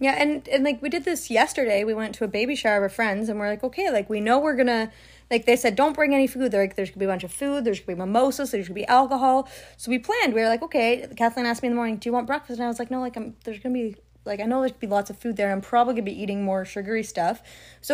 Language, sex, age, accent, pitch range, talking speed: English, female, 20-39, American, 220-275 Hz, 340 wpm